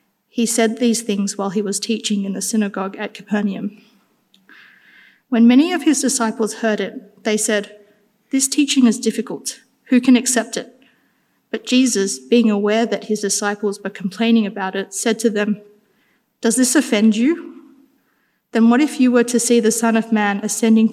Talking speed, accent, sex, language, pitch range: 170 wpm, Australian, female, English, 205-230 Hz